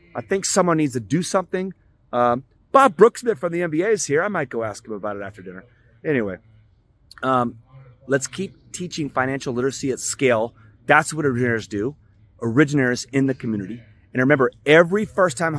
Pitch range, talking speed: 110-145 Hz, 175 wpm